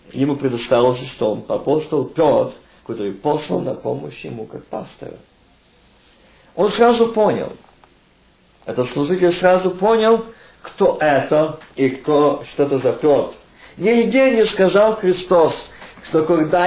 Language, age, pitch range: Russian, 50-69, 160-215 Hz